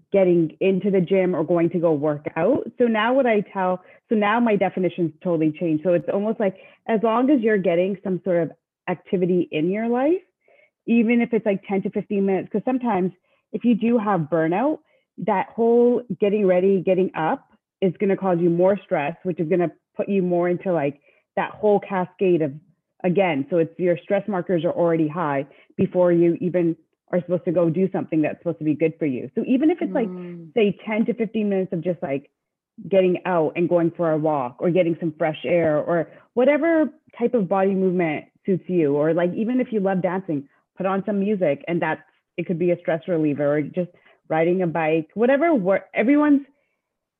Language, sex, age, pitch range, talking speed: English, female, 30-49, 170-210 Hz, 205 wpm